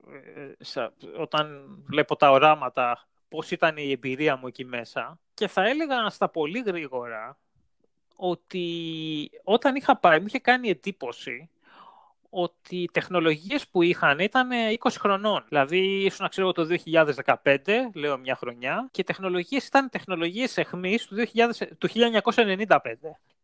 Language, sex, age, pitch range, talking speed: Greek, male, 30-49, 155-225 Hz, 135 wpm